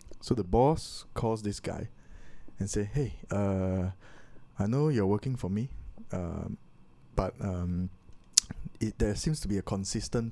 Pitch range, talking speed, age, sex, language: 95-125 Hz, 145 wpm, 20-39, male, English